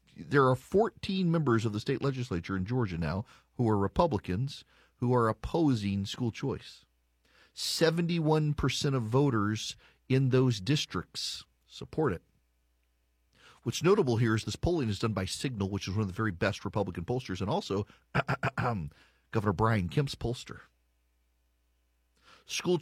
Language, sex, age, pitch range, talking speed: English, male, 40-59, 100-140 Hz, 140 wpm